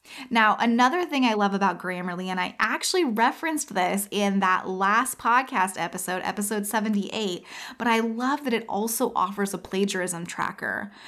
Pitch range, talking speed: 190-245 Hz, 155 wpm